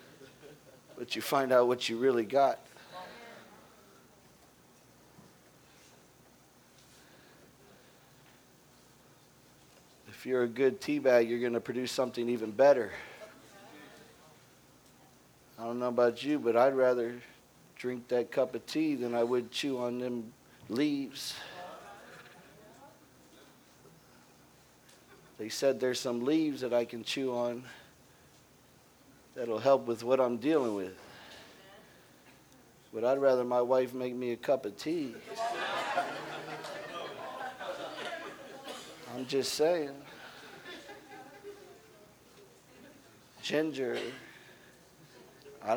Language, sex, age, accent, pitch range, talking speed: English, male, 50-69, American, 120-145 Hz, 95 wpm